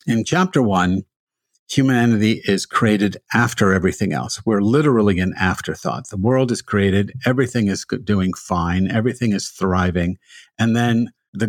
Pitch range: 100-125 Hz